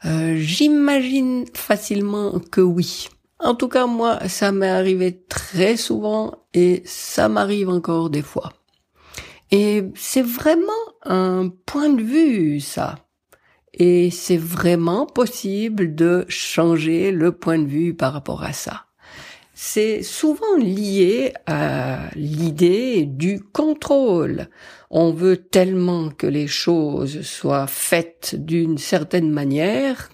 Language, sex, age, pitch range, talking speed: French, female, 60-79, 165-220 Hz, 120 wpm